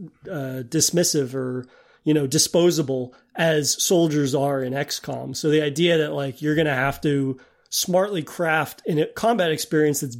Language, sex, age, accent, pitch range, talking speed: English, male, 30-49, American, 145-175 Hz, 160 wpm